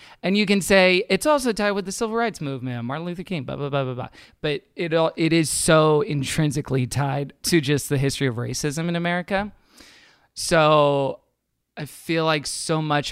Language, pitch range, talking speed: English, 130-155 Hz, 190 wpm